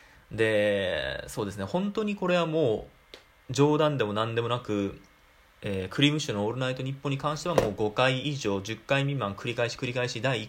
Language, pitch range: Japanese, 105-155 Hz